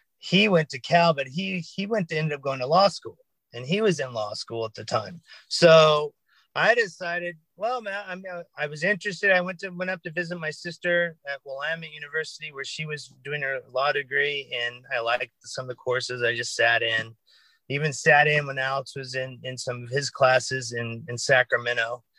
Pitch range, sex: 130-175 Hz, male